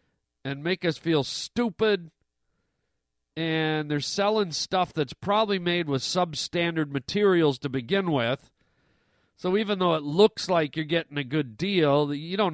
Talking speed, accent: 150 wpm, American